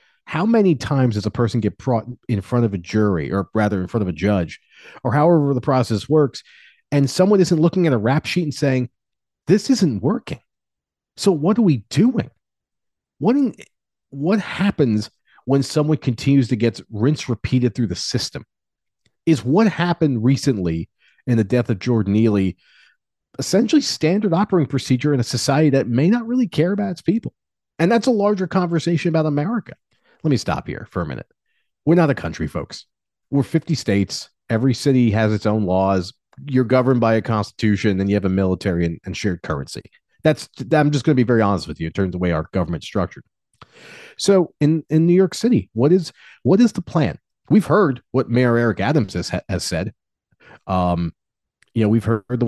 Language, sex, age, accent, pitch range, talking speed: English, male, 40-59, American, 105-165 Hz, 195 wpm